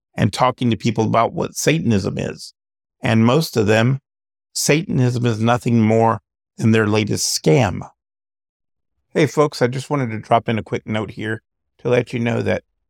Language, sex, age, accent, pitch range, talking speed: English, male, 50-69, American, 100-115 Hz, 170 wpm